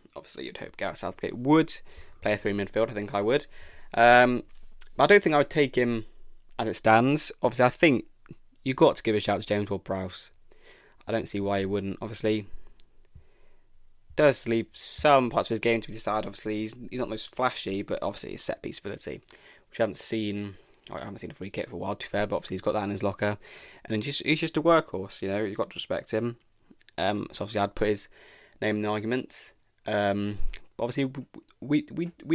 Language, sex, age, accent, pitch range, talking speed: English, male, 20-39, British, 100-120 Hz, 220 wpm